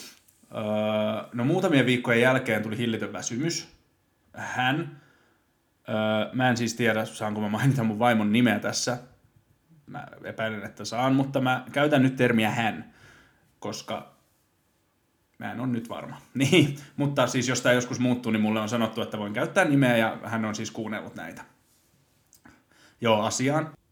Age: 30-49